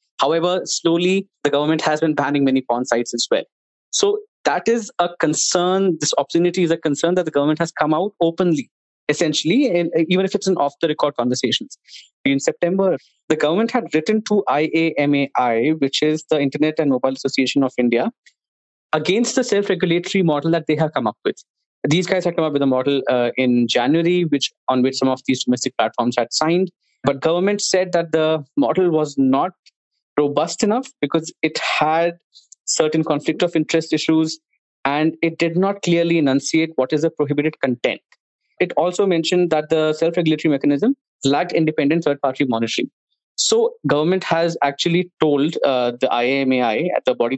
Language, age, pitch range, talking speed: English, 20-39, 135-170 Hz, 180 wpm